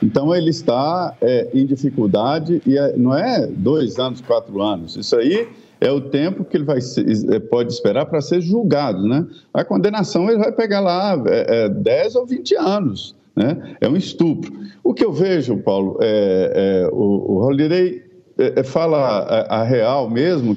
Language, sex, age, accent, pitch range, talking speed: Portuguese, male, 50-69, Brazilian, 135-210 Hz, 150 wpm